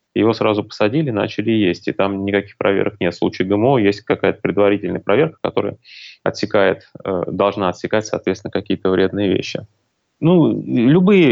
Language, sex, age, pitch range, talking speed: Russian, male, 20-39, 100-115 Hz, 145 wpm